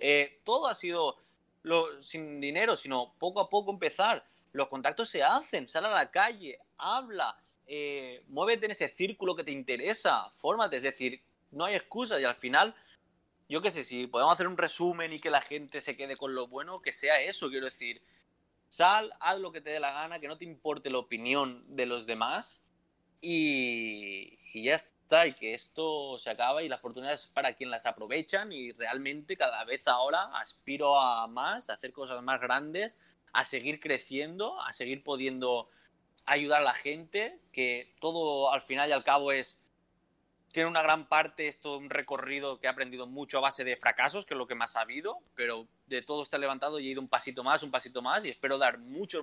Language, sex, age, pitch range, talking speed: Spanish, male, 20-39, 125-155 Hz, 200 wpm